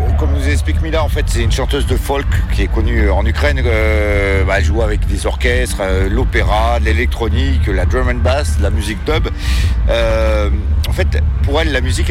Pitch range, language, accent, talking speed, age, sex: 75-85 Hz, English, French, 210 wpm, 40-59, male